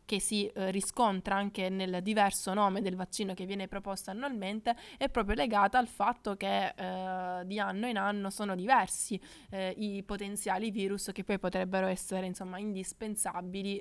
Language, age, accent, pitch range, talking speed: Italian, 20-39, native, 185-215 Hz, 160 wpm